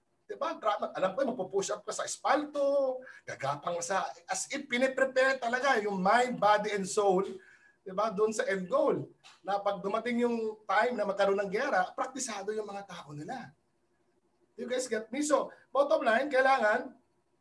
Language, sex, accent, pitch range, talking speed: Filipino, male, native, 155-240 Hz, 155 wpm